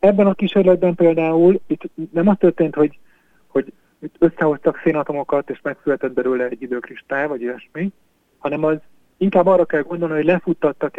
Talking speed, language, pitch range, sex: 155 wpm, Hungarian, 130-165 Hz, male